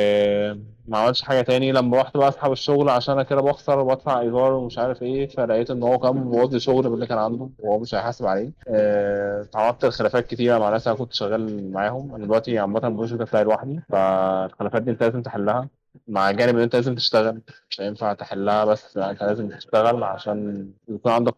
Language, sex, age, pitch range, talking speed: Arabic, male, 20-39, 105-125 Hz, 195 wpm